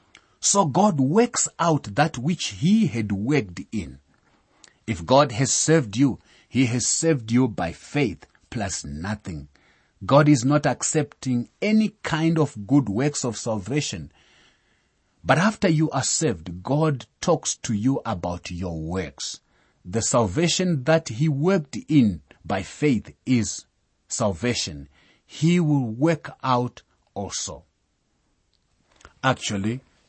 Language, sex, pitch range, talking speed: English, male, 100-145 Hz, 125 wpm